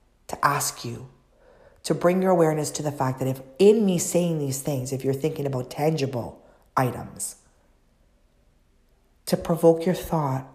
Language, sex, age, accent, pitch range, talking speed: English, female, 40-59, American, 130-185 Hz, 155 wpm